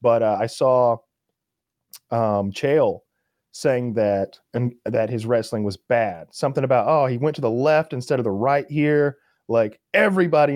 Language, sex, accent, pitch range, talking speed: English, male, American, 110-140 Hz, 165 wpm